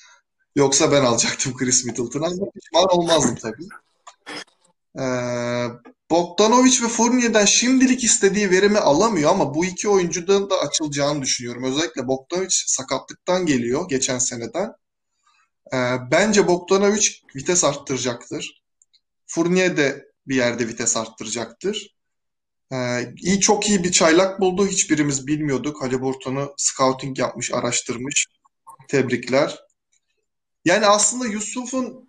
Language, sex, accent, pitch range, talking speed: Turkish, male, native, 135-200 Hz, 105 wpm